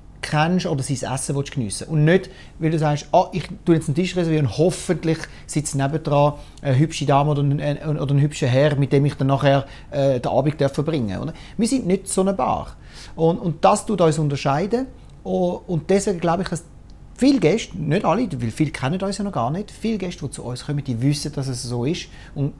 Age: 30-49